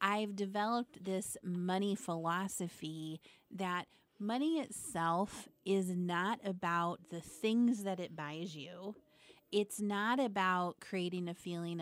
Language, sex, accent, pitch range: English, female, American, 170-205 Hz